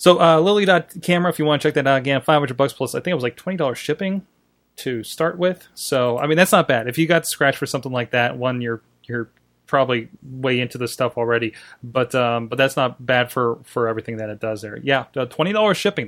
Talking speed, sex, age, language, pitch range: 255 wpm, male, 30-49, English, 125-160 Hz